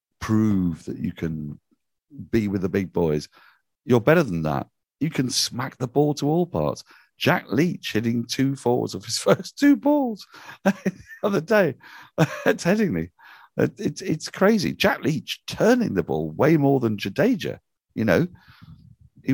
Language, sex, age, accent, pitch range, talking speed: English, male, 50-69, British, 85-120 Hz, 160 wpm